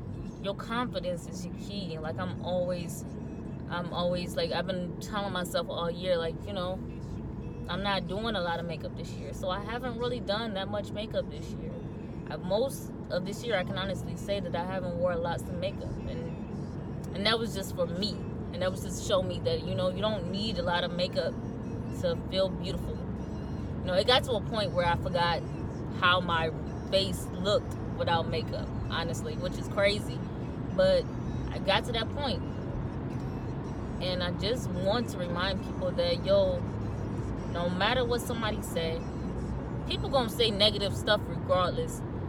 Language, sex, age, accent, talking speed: English, female, 20-39, American, 185 wpm